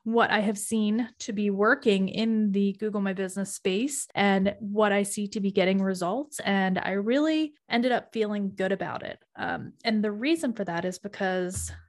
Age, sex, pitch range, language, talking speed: 20-39, female, 195-230 Hz, English, 190 wpm